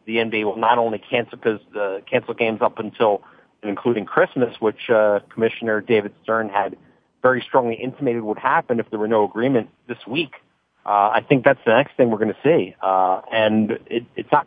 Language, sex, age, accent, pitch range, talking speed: English, male, 40-59, American, 115-145 Hz, 205 wpm